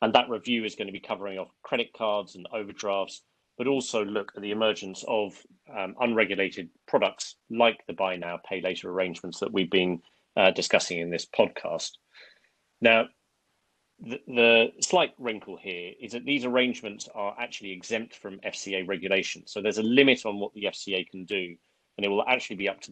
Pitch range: 95-115 Hz